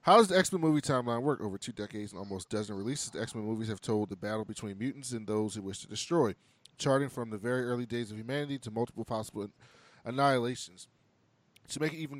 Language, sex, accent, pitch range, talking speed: English, male, American, 105-135 Hz, 220 wpm